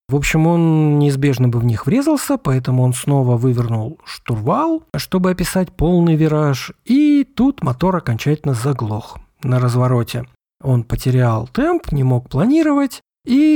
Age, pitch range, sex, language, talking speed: 40-59, 120-185 Hz, male, Russian, 135 wpm